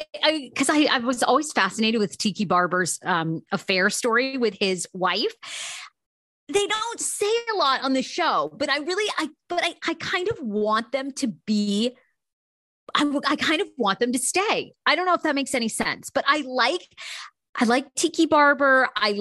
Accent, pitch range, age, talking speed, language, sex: American, 205-285 Hz, 30-49, 195 wpm, English, female